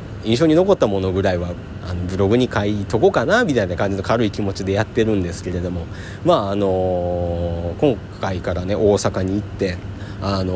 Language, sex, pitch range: Japanese, male, 95-115 Hz